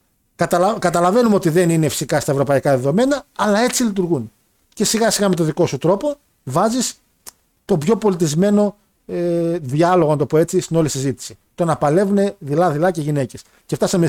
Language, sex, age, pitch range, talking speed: Greek, male, 50-69, 145-205 Hz, 145 wpm